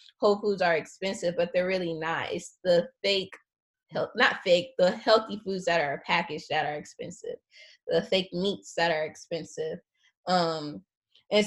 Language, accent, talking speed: English, American, 155 wpm